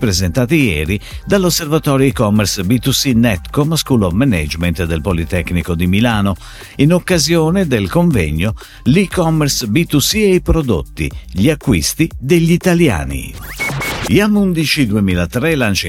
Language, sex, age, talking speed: Italian, male, 50-69, 110 wpm